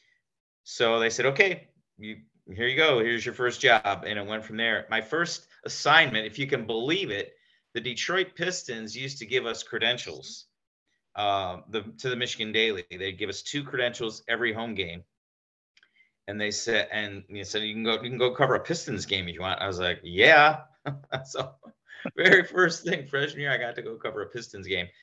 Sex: male